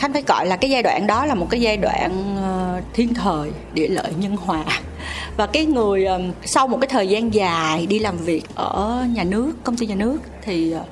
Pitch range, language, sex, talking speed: 195-255 Hz, Vietnamese, female, 215 wpm